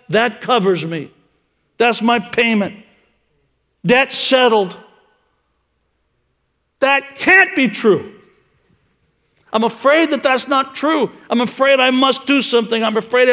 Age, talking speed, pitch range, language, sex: 60-79, 115 wpm, 215-280 Hz, English, male